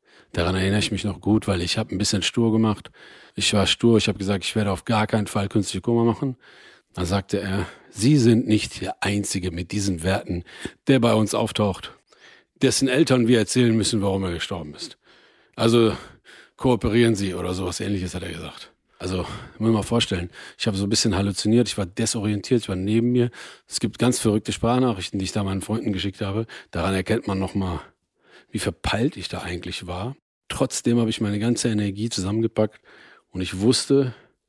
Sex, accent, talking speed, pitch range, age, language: male, German, 195 wpm, 95-115 Hz, 40-59, German